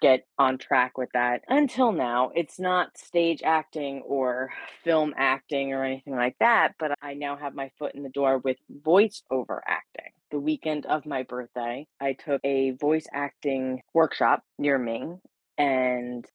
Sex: female